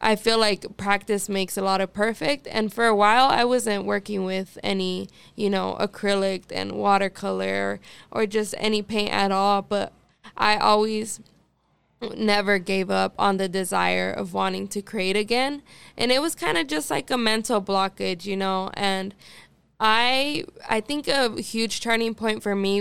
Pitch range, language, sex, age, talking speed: 195-220 Hz, English, female, 20-39, 170 wpm